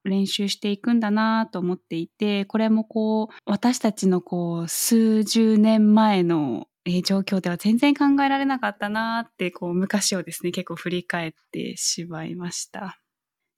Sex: female